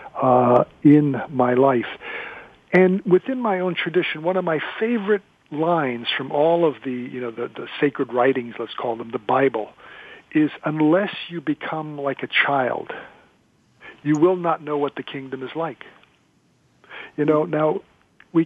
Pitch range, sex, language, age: 145-195 Hz, male, English, 50-69